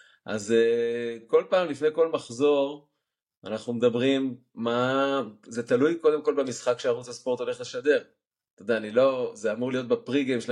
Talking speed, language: 150 wpm, Hebrew